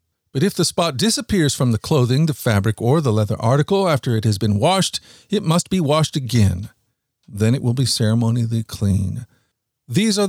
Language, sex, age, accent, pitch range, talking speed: English, male, 50-69, American, 115-145 Hz, 185 wpm